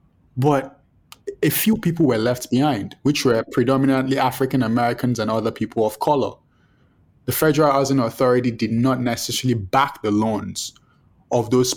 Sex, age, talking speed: male, 20-39, 145 wpm